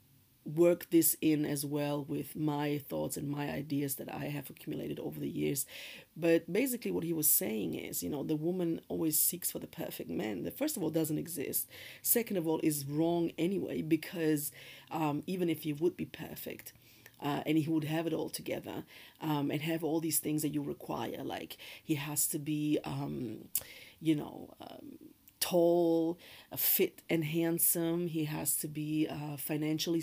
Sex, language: female, English